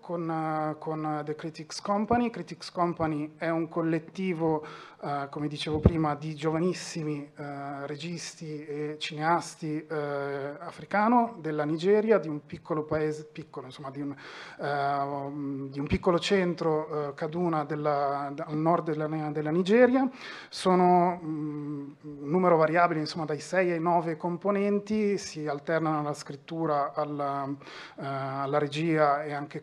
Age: 30-49